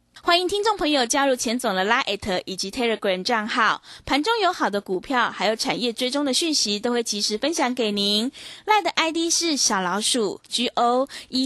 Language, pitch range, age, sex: Chinese, 220-300 Hz, 20-39, female